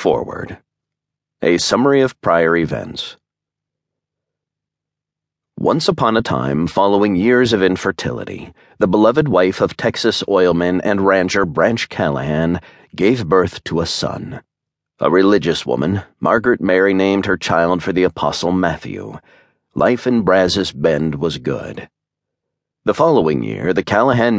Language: English